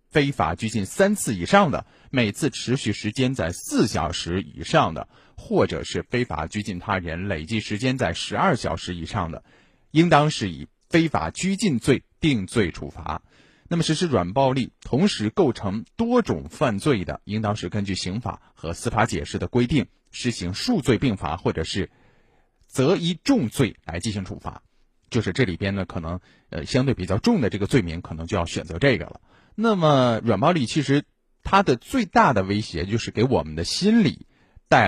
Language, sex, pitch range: Chinese, male, 95-140 Hz